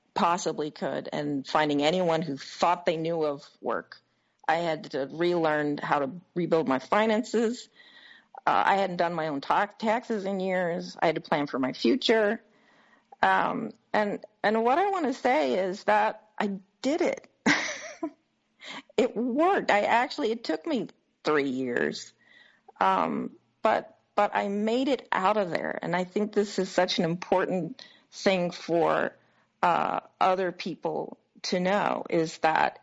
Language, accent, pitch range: English, American, 160-220 Hz